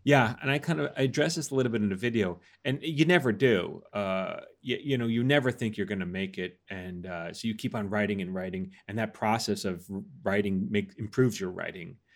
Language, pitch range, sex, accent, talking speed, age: English, 100-130 Hz, male, American, 230 wpm, 30-49